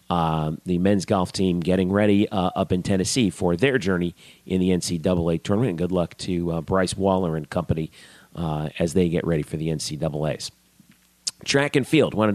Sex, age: male, 40-59